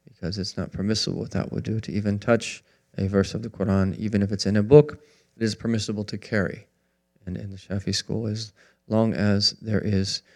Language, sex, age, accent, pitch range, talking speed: English, male, 30-49, American, 100-115 Hz, 215 wpm